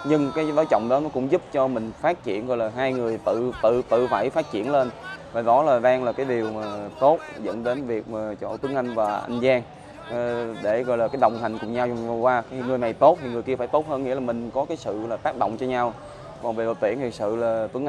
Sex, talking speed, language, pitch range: male, 270 wpm, Vietnamese, 115-130 Hz